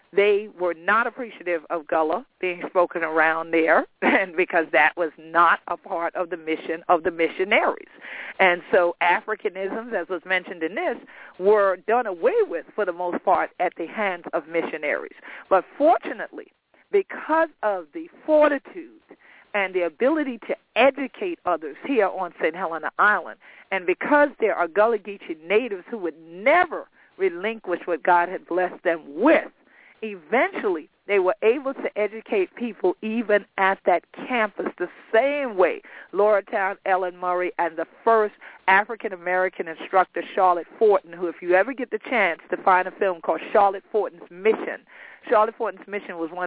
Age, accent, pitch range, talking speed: 50-69, American, 175-235 Hz, 160 wpm